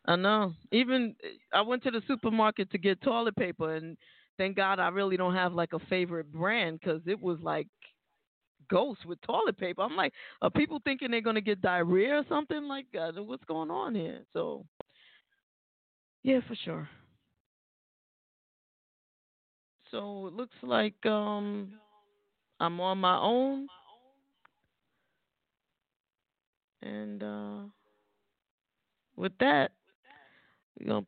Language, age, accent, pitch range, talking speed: English, 20-39, American, 165-220 Hz, 125 wpm